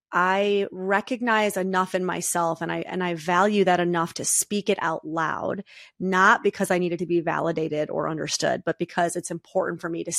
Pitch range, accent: 175-205 Hz, American